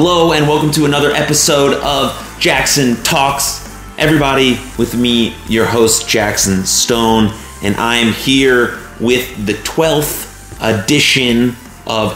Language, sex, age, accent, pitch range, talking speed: English, male, 30-49, American, 95-115 Hz, 125 wpm